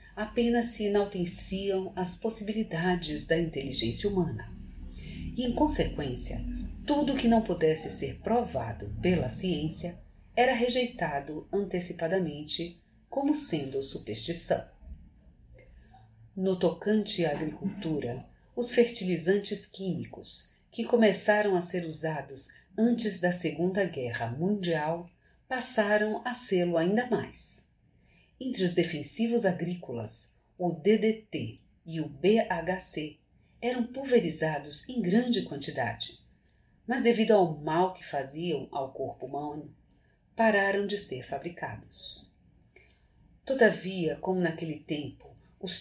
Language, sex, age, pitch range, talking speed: Portuguese, female, 50-69, 155-215 Hz, 105 wpm